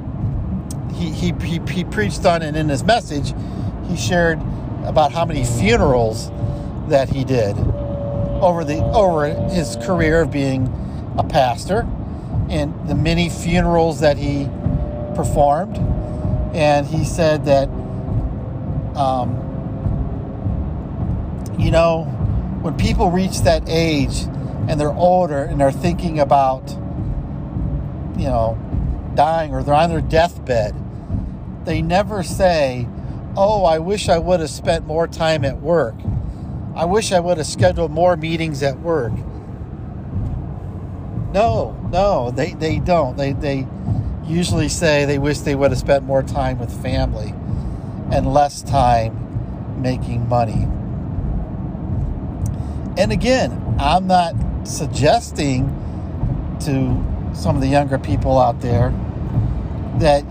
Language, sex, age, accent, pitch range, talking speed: English, male, 50-69, American, 130-160 Hz, 120 wpm